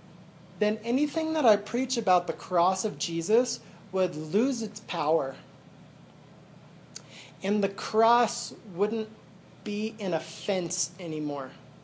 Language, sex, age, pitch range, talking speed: English, male, 30-49, 165-210 Hz, 110 wpm